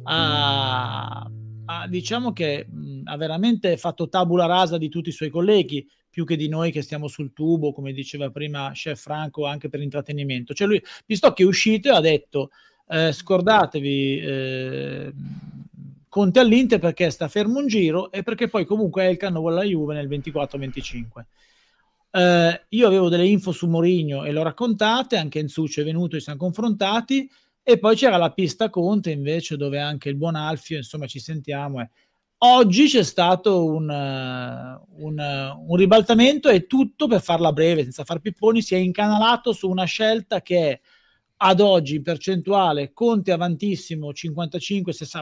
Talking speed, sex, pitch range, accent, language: 165 wpm, male, 150-210 Hz, native, Italian